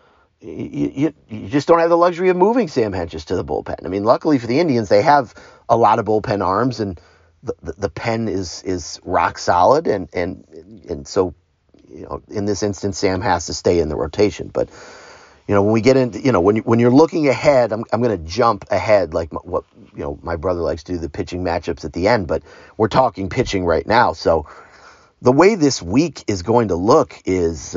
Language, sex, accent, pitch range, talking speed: English, male, American, 95-140 Hz, 225 wpm